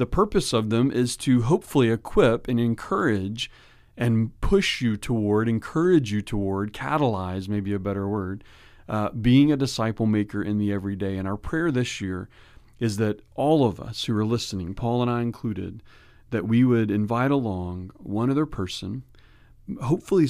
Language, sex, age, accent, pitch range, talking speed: English, male, 40-59, American, 100-120 Hz, 165 wpm